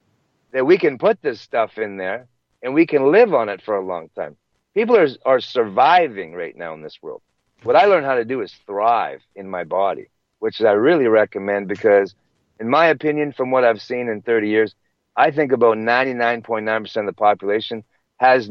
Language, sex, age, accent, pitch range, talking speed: English, male, 40-59, American, 110-145 Hz, 200 wpm